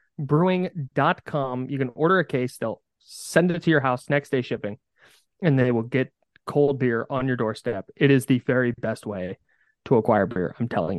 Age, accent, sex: 20-39, American, male